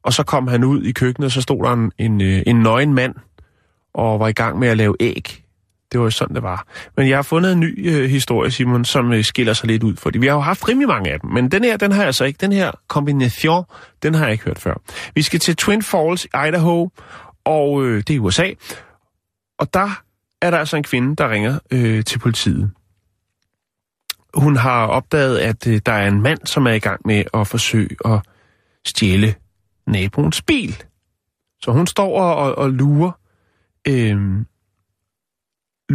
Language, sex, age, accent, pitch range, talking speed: Danish, male, 30-49, native, 100-140 Hz, 205 wpm